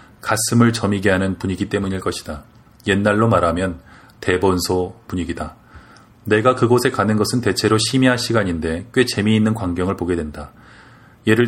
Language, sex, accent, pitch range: Korean, male, native, 95-115 Hz